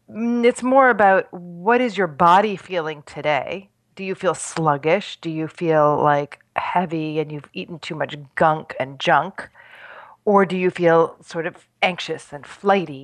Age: 40-59